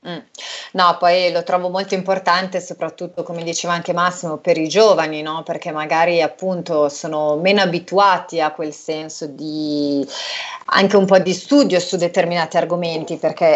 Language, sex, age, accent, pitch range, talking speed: Italian, female, 30-49, native, 150-175 Hz, 150 wpm